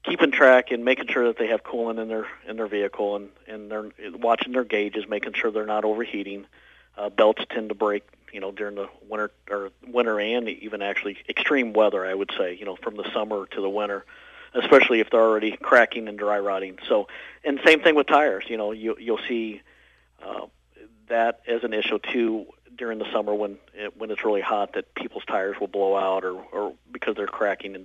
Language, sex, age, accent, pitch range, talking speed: English, male, 50-69, American, 105-120 Hz, 215 wpm